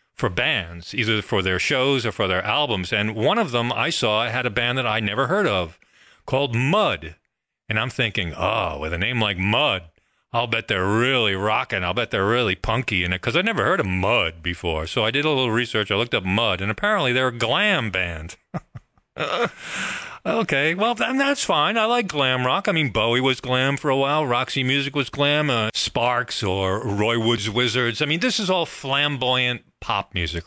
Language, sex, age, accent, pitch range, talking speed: English, male, 40-59, American, 105-155 Hz, 210 wpm